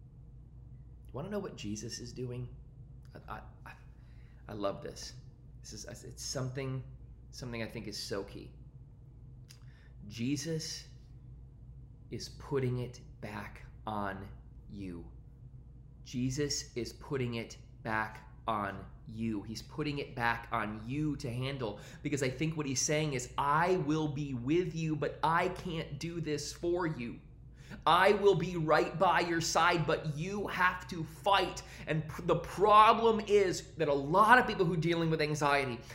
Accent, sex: American, male